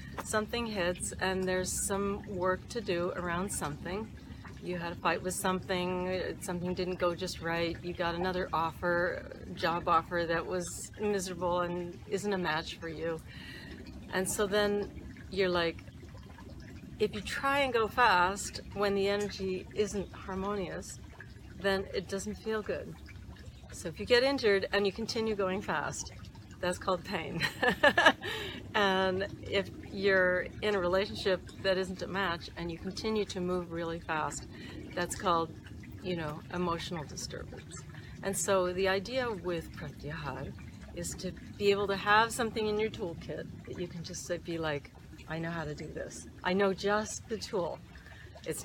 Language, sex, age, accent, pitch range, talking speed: English, female, 40-59, American, 170-200 Hz, 155 wpm